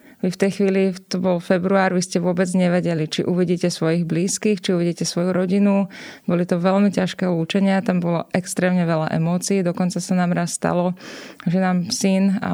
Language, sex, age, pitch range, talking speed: Slovak, female, 20-39, 175-195 Hz, 170 wpm